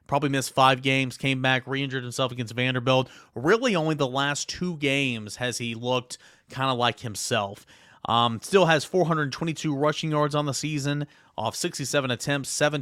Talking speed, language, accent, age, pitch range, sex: 170 wpm, English, American, 30-49, 120-150 Hz, male